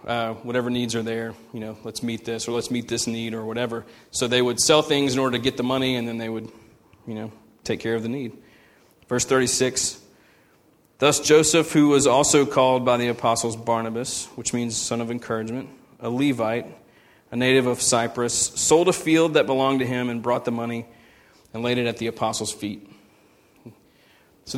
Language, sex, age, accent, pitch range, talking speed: English, male, 30-49, American, 115-145 Hz, 200 wpm